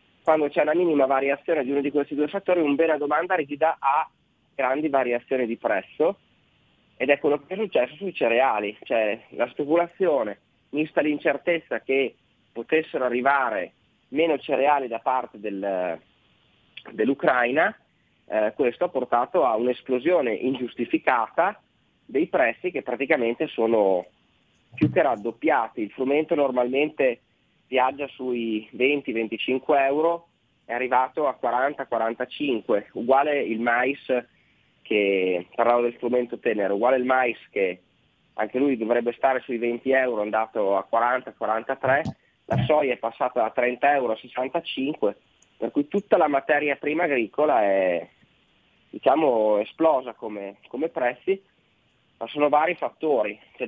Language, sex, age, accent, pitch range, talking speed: Italian, male, 30-49, native, 120-150 Hz, 135 wpm